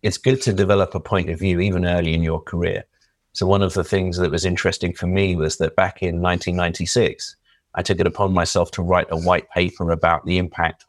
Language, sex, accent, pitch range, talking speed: English, male, British, 85-95 Hz, 225 wpm